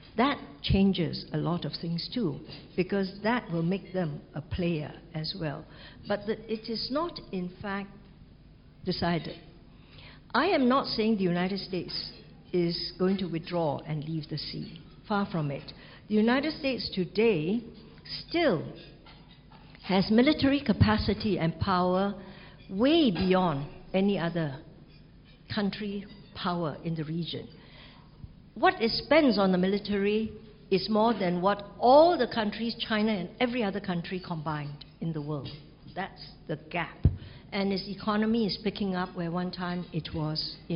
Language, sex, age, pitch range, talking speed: English, female, 60-79, 165-210 Hz, 145 wpm